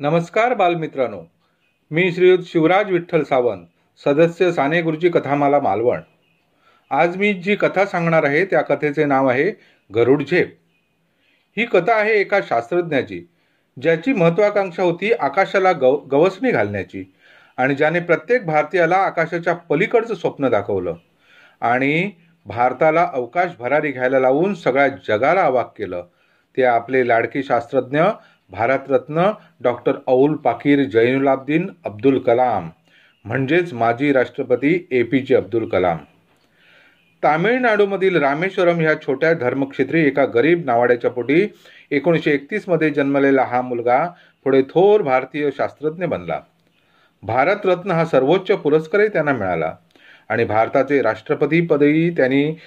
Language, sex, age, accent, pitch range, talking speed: Marathi, male, 40-59, native, 135-180 Hz, 115 wpm